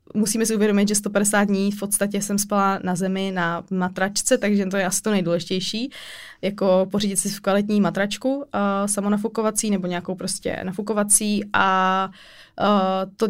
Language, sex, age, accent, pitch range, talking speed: Czech, female, 20-39, native, 190-215 Hz, 160 wpm